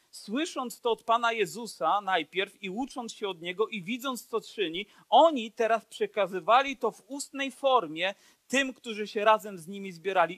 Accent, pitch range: native, 185-255 Hz